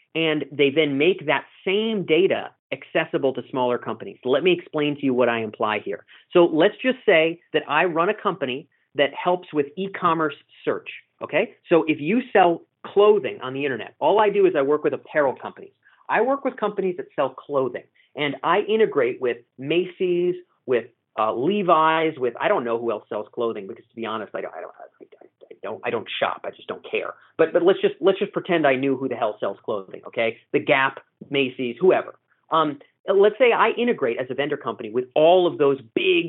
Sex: male